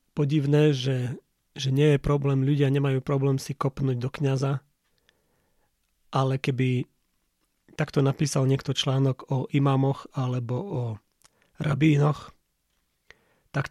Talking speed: 110 wpm